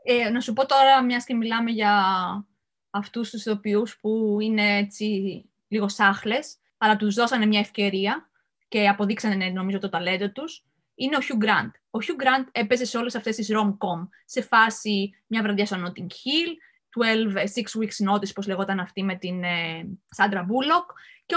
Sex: female